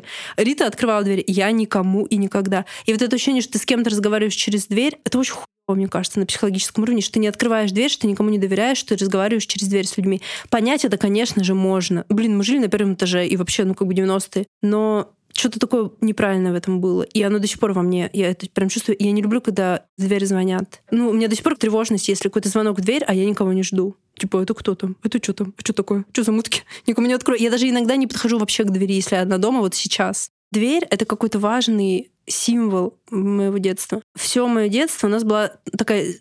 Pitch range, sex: 195-225 Hz, female